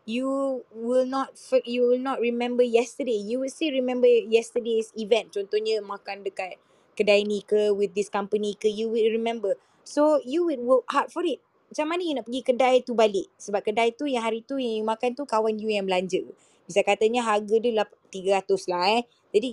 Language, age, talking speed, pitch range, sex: Malay, 20-39, 195 wpm, 210-260 Hz, female